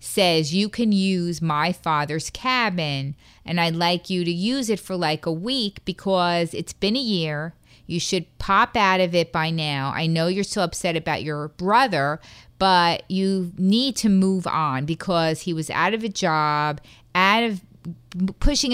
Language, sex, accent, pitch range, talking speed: English, female, American, 160-195 Hz, 175 wpm